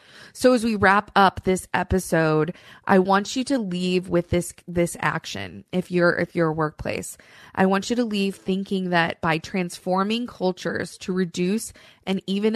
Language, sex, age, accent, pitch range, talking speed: English, female, 20-39, American, 175-205 Hz, 170 wpm